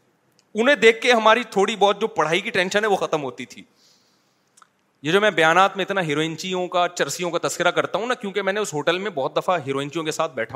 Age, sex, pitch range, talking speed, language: 30-49, male, 140-185 Hz, 220 wpm, Urdu